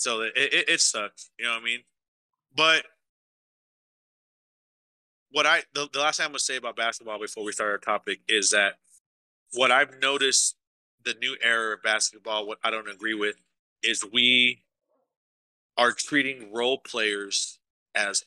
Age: 30-49